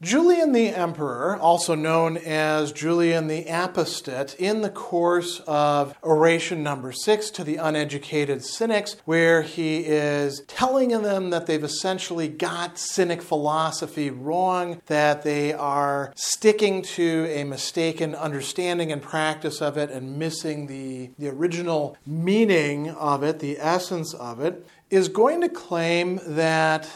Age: 40-59